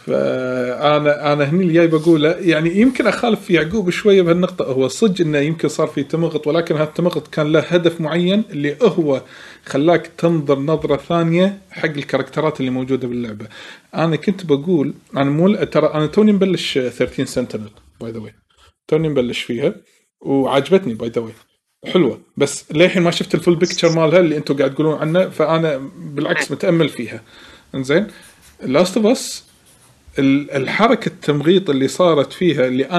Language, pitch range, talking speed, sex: Arabic, 145-185 Hz, 150 wpm, male